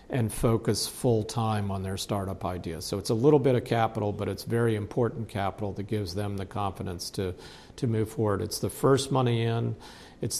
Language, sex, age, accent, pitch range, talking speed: English, male, 50-69, American, 100-115 Hz, 195 wpm